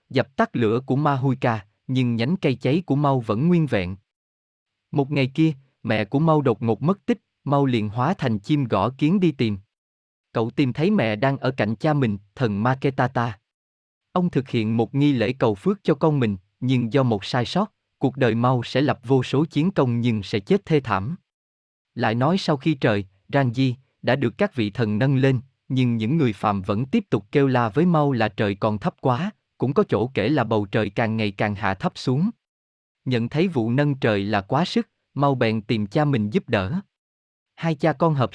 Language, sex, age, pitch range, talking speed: Vietnamese, male, 20-39, 110-150 Hz, 215 wpm